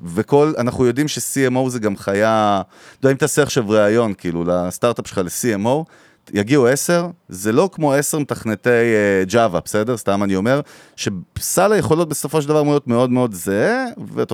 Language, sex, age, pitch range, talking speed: Hebrew, male, 30-49, 105-140 Hz, 170 wpm